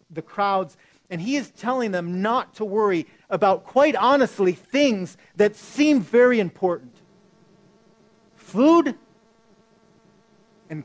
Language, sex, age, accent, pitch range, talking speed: English, male, 40-59, American, 175-220 Hz, 110 wpm